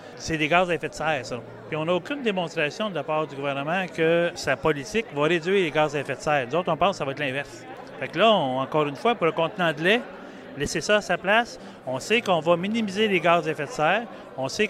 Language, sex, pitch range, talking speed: French, male, 150-190 Hz, 280 wpm